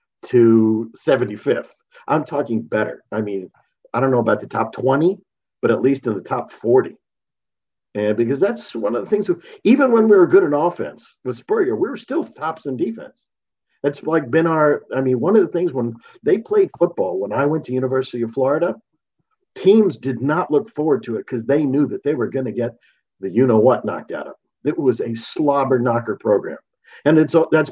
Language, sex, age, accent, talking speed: English, male, 50-69, American, 210 wpm